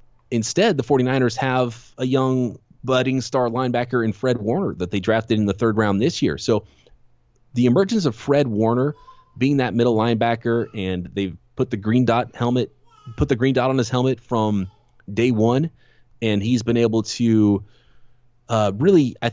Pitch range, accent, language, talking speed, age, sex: 95-120 Hz, American, English, 175 wpm, 30-49, male